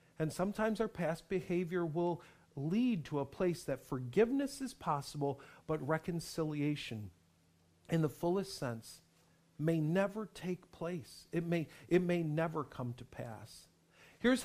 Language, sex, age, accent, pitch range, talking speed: English, male, 50-69, American, 125-175 Hz, 135 wpm